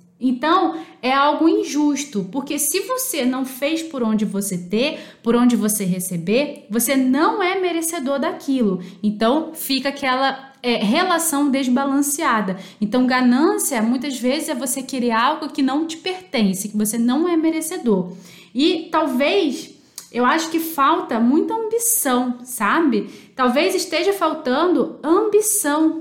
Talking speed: 130 wpm